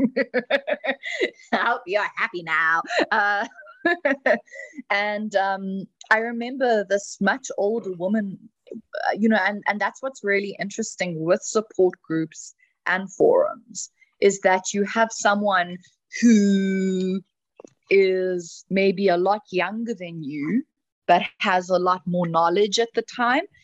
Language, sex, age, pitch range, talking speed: English, female, 20-39, 190-240 Hz, 125 wpm